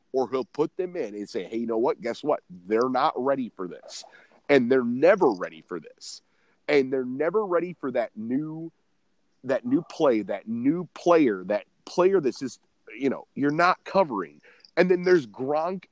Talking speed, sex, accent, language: 190 wpm, male, American, English